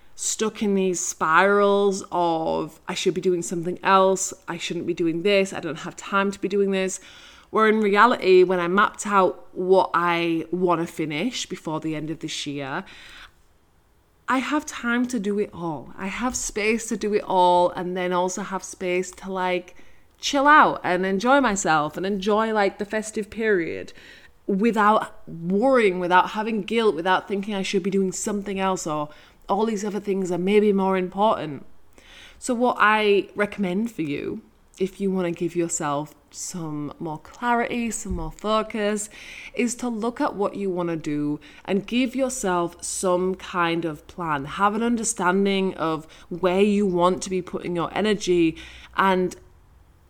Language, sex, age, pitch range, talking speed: English, female, 20-39, 170-210 Hz, 170 wpm